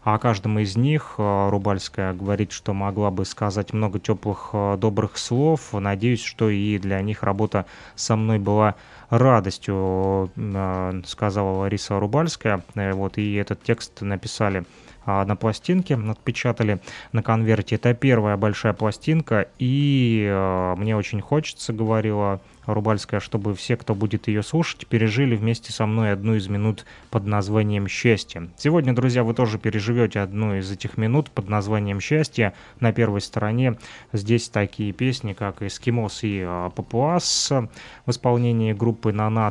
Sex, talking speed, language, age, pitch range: male, 135 wpm, Russian, 20-39, 100-115 Hz